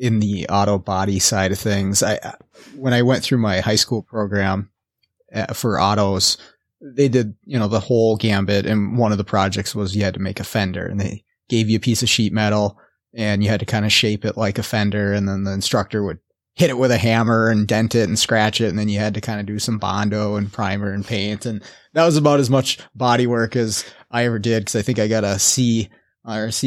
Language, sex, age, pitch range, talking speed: English, male, 30-49, 105-120 Hz, 240 wpm